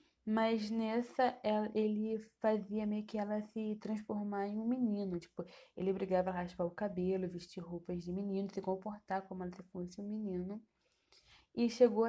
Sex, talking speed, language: female, 165 wpm, Portuguese